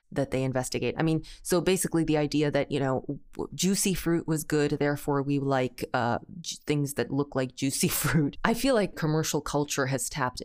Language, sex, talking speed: English, female, 190 wpm